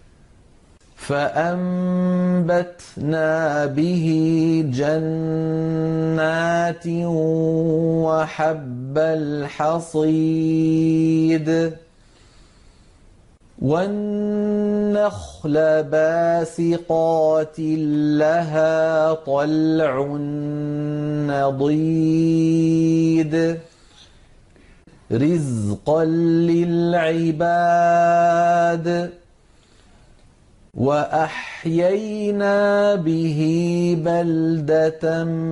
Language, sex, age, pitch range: Arabic, male, 40-59, 155-170 Hz